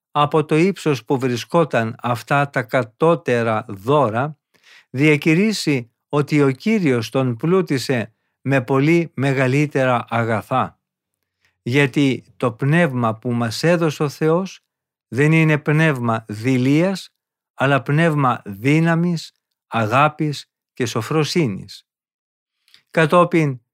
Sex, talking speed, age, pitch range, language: male, 95 wpm, 50-69, 125-160 Hz, Greek